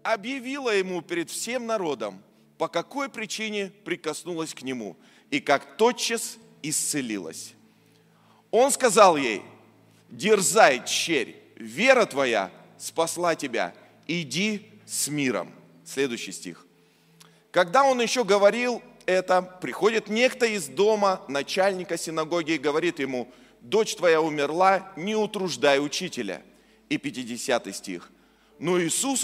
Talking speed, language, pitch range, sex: 110 wpm, Russian, 145-220 Hz, male